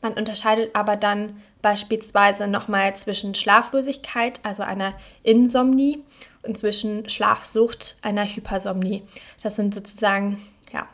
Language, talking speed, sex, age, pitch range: German, 110 wpm, female, 20-39, 200-220 Hz